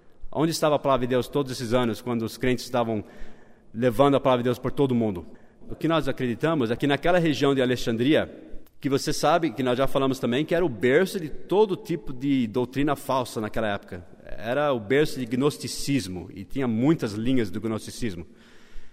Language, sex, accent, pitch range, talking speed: Portuguese, male, Brazilian, 120-145 Hz, 200 wpm